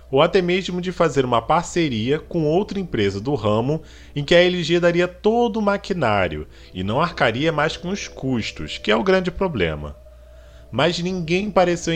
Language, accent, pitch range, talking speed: Portuguese, Brazilian, 100-165 Hz, 175 wpm